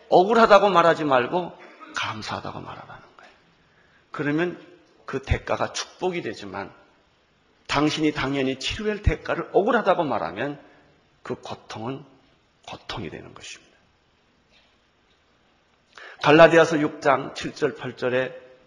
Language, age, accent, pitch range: Korean, 40-59, native, 130-185 Hz